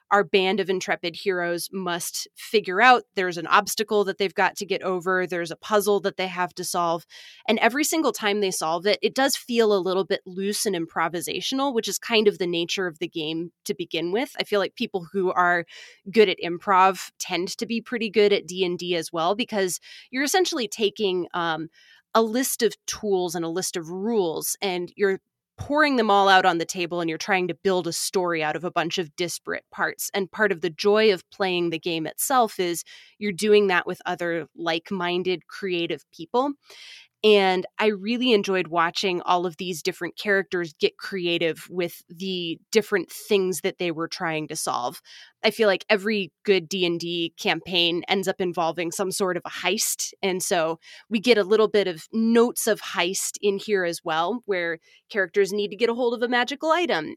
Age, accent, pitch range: 20-39, American, 175-210 Hz